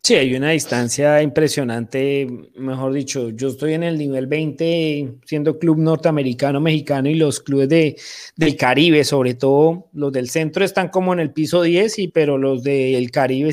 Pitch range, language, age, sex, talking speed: 135-170 Hz, Spanish, 30-49, male, 170 wpm